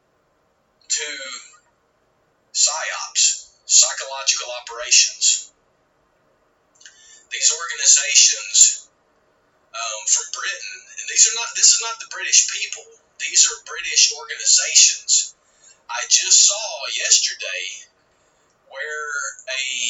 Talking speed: 85 wpm